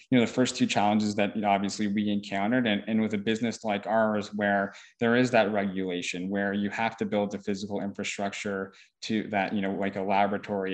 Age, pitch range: 20-39, 100-110 Hz